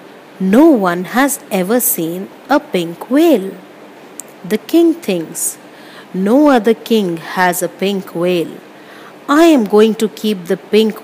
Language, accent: English, Indian